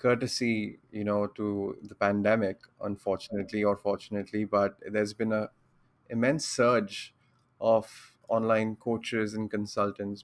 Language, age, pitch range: English, 20-39, 105-115 Hz